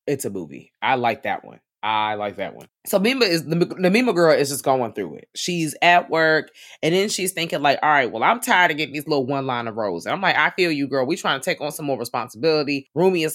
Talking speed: 275 wpm